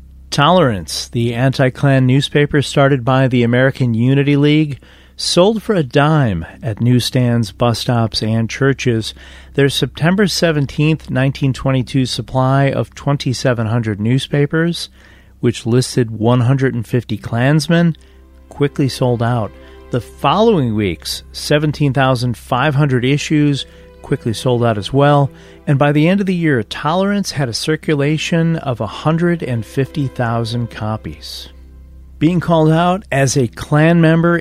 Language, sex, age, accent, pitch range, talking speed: English, male, 40-59, American, 115-150 Hz, 115 wpm